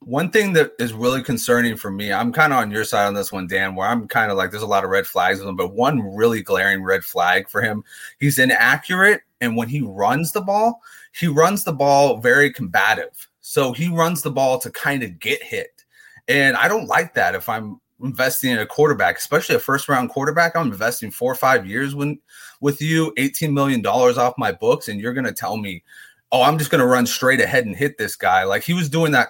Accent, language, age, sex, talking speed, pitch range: American, English, 30-49, male, 235 wpm, 120-165 Hz